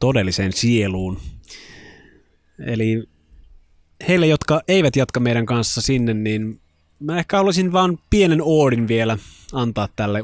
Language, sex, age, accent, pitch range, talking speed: Finnish, male, 20-39, native, 100-120 Hz, 115 wpm